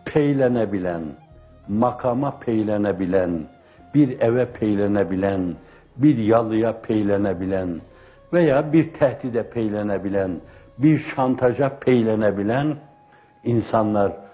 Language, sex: Turkish, male